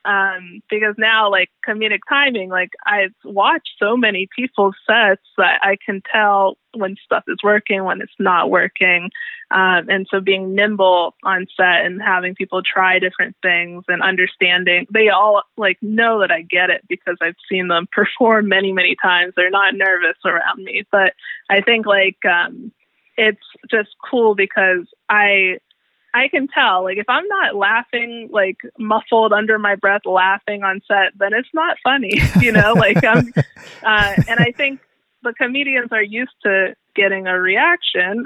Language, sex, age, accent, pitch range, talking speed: English, female, 20-39, American, 185-225 Hz, 170 wpm